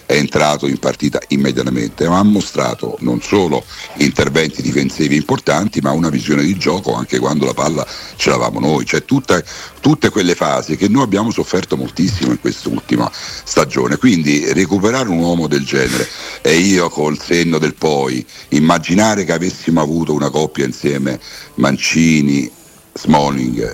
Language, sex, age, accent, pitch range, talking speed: Italian, male, 60-79, native, 65-80 Hz, 150 wpm